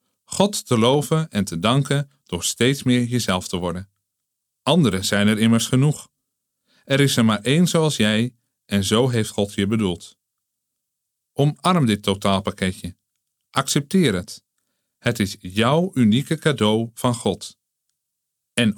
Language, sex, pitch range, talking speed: Dutch, male, 105-130 Hz, 135 wpm